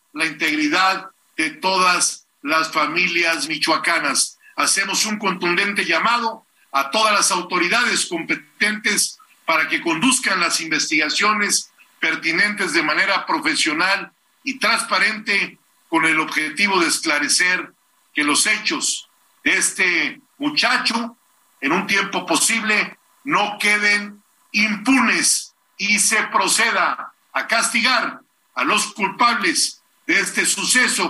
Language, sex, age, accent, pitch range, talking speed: Spanish, male, 50-69, Mexican, 185-240 Hz, 105 wpm